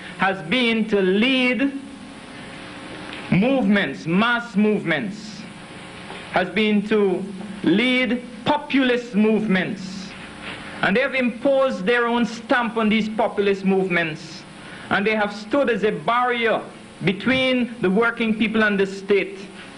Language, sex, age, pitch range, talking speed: English, male, 60-79, 185-230 Hz, 115 wpm